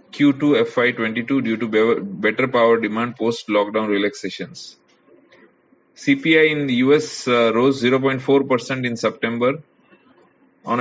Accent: Indian